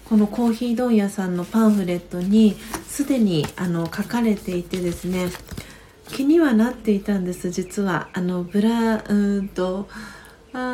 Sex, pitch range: female, 195-240 Hz